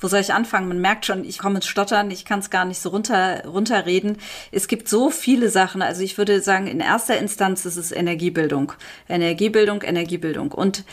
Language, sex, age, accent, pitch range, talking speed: German, female, 30-49, German, 175-200 Hz, 205 wpm